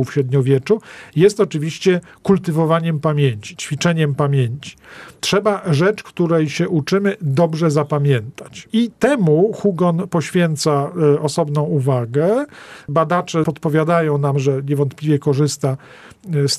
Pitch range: 145-170 Hz